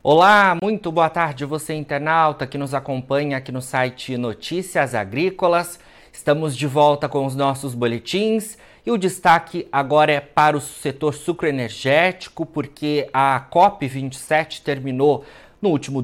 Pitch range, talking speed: 130-170 Hz, 135 wpm